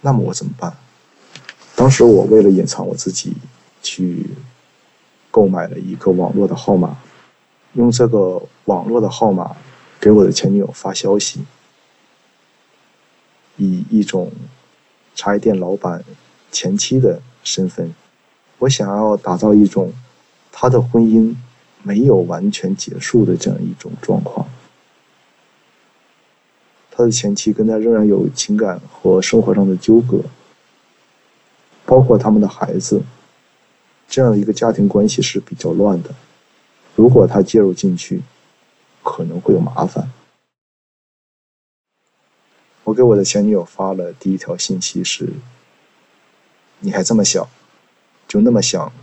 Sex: male